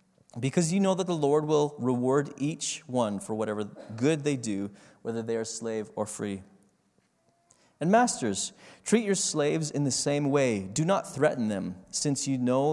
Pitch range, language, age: 120-160 Hz, English, 30-49